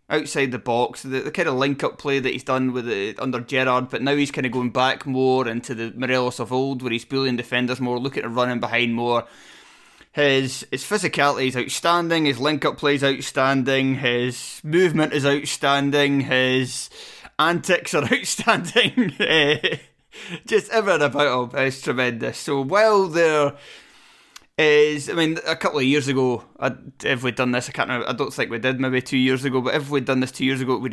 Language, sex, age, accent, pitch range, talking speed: English, male, 20-39, British, 125-155 Hz, 195 wpm